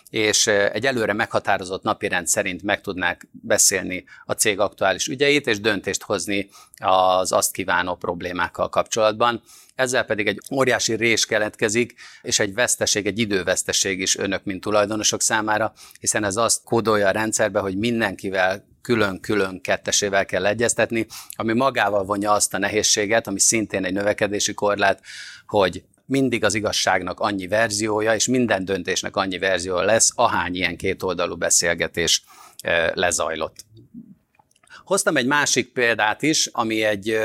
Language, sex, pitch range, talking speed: Hungarian, male, 100-115 Hz, 135 wpm